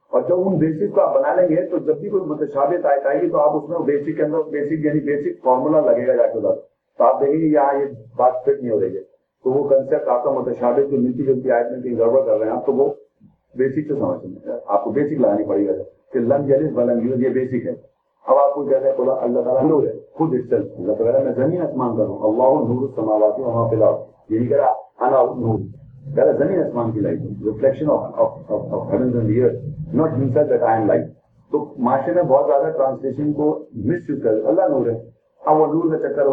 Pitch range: 130-190 Hz